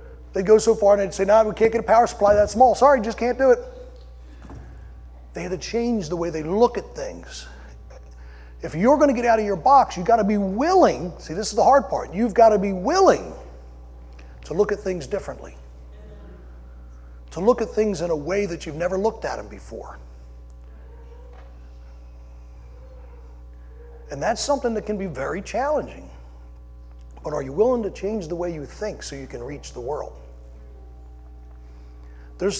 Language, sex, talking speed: English, male, 185 wpm